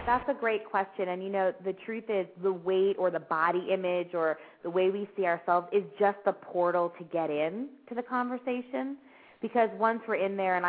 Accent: American